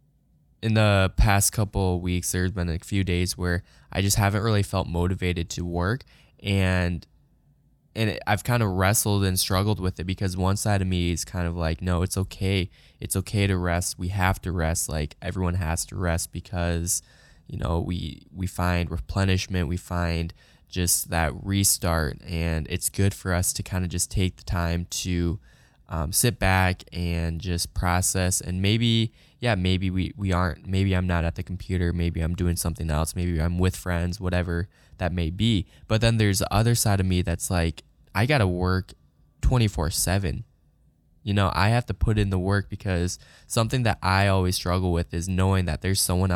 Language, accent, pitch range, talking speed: English, American, 85-100 Hz, 190 wpm